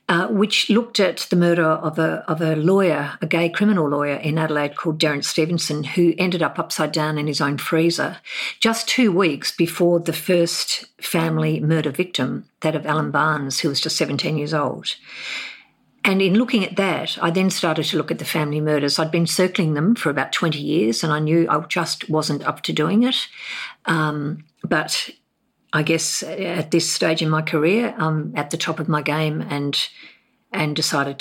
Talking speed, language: 195 wpm, English